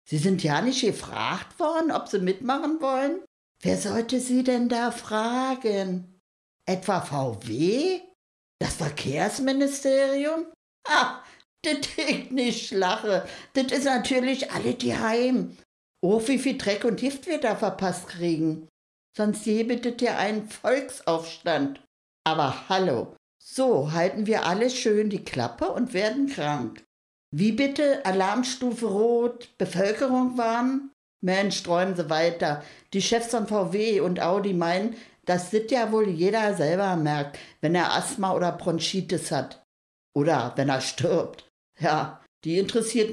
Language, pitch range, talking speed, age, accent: German, 170-245 Hz, 135 wpm, 60-79, German